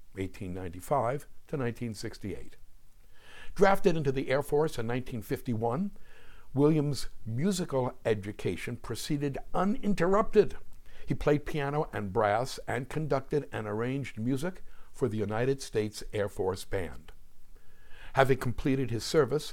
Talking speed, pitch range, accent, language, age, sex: 110 wpm, 110-150 Hz, American, English, 60-79, male